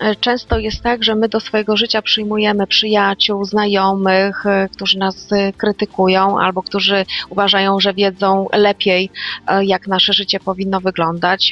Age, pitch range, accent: 30-49, 190-210 Hz, native